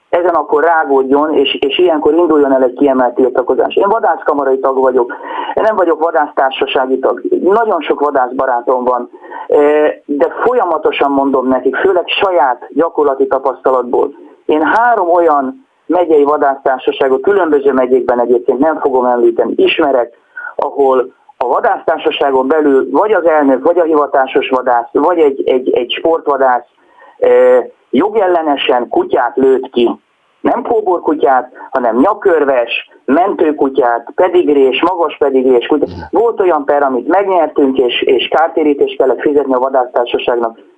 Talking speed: 125 wpm